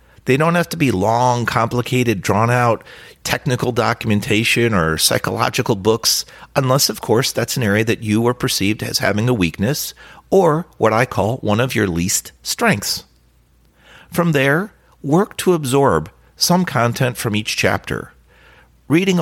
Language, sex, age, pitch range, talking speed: English, male, 50-69, 105-150 Hz, 145 wpm